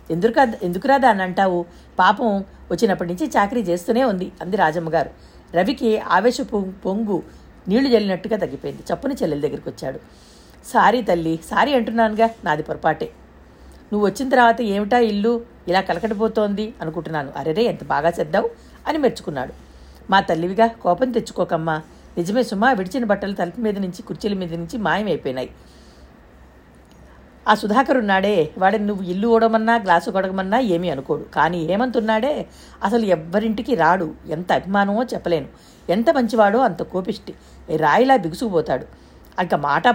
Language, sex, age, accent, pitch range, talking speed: Telugu, female, 50-69, native, 175-230 Hz, 125 wpm